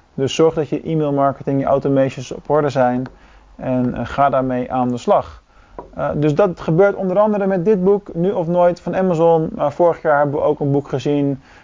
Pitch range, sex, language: 125-155 Hz, male, Dutch